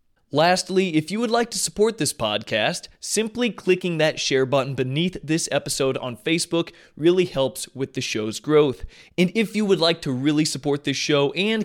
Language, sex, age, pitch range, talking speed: English, male, 20-39, 125-170 Hz, 185 wpm